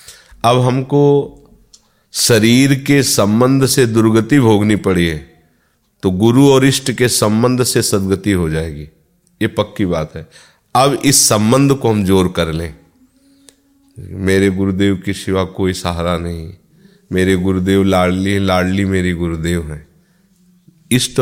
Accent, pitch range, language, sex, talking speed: native, 95-120 Hz, Hindi, male, 135 wpm